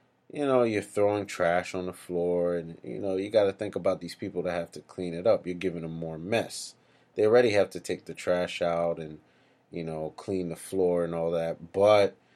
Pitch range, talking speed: 80-95 Hz, 230 wpm